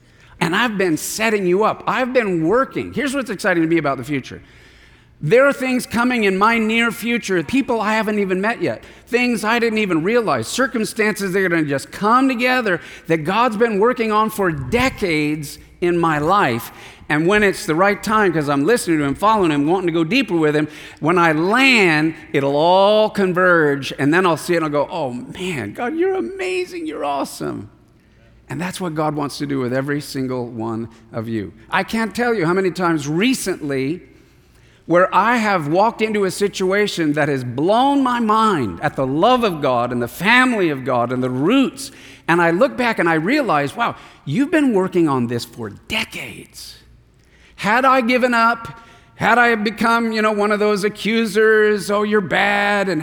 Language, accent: English, American